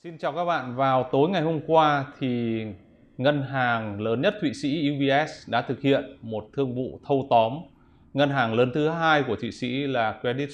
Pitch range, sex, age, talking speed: 115-145 Hz, male, 20-39, 200 wpm